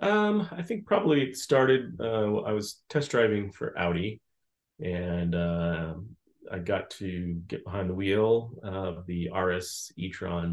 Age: 30-49